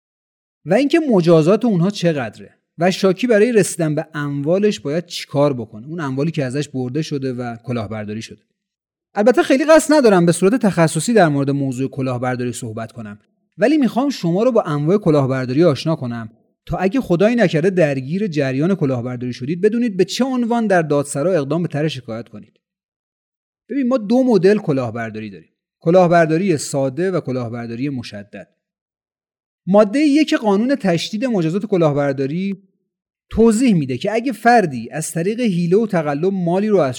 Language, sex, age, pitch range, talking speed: Persian, male, 30-49, 140-205 Hz, 150 wpm